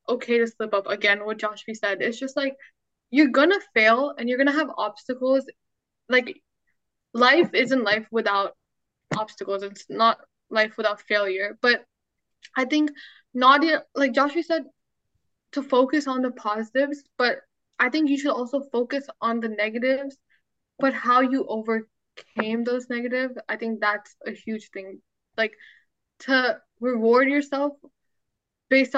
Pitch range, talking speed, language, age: 210-270 Hz, 145 wpm, English, 10-29